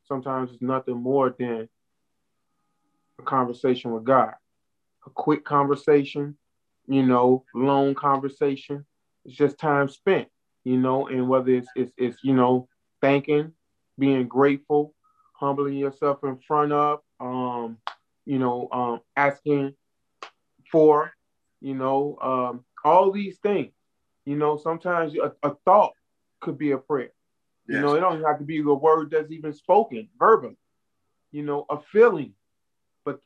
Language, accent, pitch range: English, American, 130-160 Hz